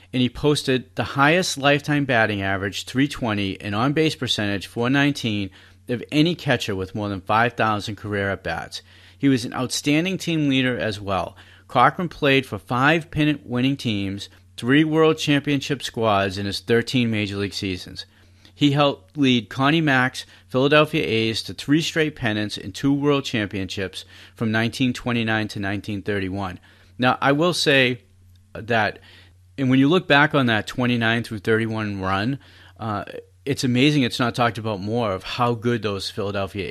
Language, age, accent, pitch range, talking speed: English, 40-59, American, 95-125 Hz, 155 wpm